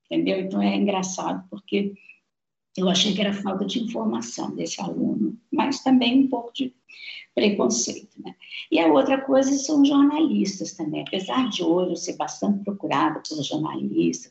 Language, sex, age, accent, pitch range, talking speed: Portuguese, female, 50-69, Brazilian, 170-235 Hz, 155 wpm